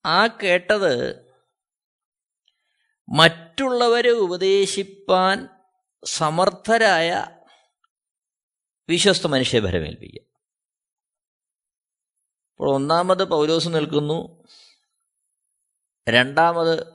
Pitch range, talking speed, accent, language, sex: 160-270 Hz, 45 wpm, native, Malayalam, male